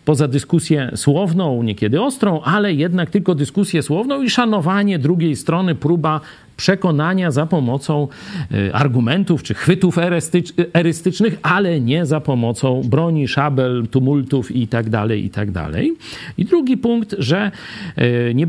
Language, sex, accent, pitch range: Polish, male, native, 135-185 Hz